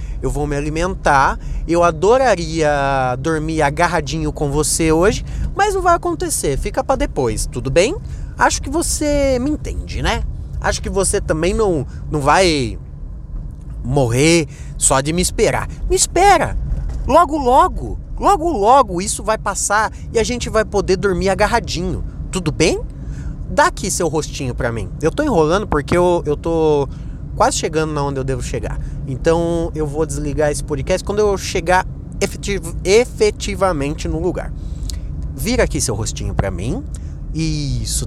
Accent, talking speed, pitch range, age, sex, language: Brazilian, 150 wpm, 140-200 Hz, 20-39, male, Portuguese